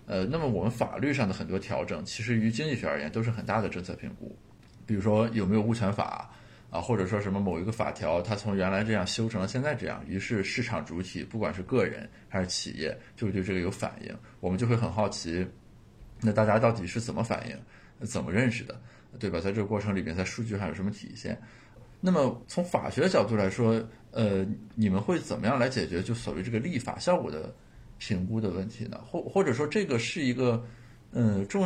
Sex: male